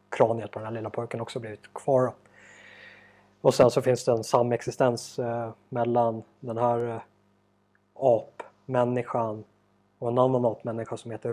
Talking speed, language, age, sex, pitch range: 155 wpm, Swedish, 20-39, male, 110-120 Hz